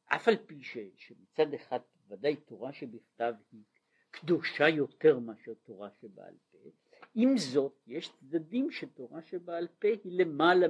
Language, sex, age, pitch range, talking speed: Hebrew, male, 60-79, 125-180 Hz, 140 wpm